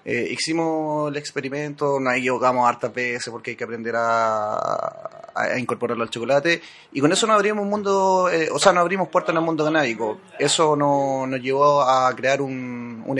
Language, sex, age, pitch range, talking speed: Spanish, male, 30-49, 125-150 Hz, 195 wpm